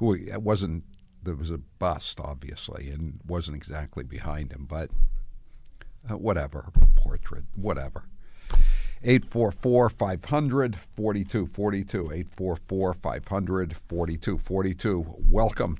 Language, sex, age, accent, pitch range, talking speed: English, male, 60-79, American, 80-95 Hz, 70 wpm